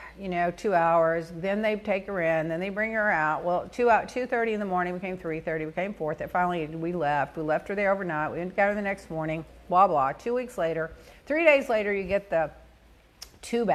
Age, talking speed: 50-69, 240 wpm